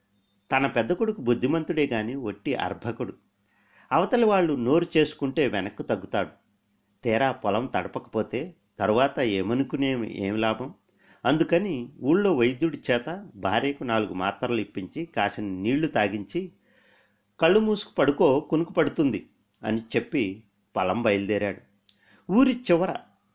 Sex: male